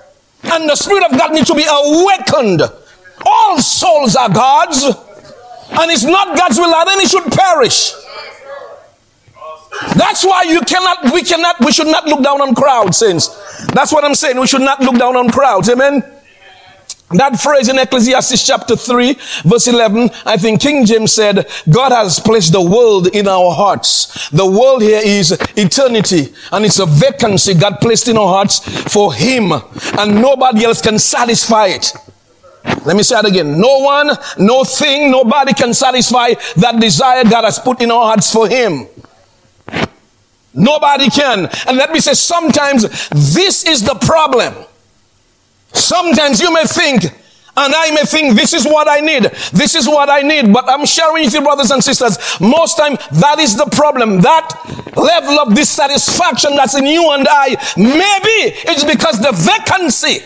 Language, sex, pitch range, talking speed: English, male, 220-295 Hz, 170 wpm